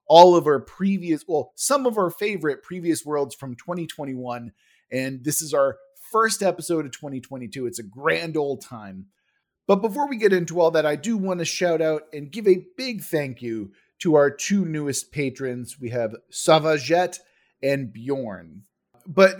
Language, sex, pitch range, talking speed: English, male, 125-175 Hz, 175 wpm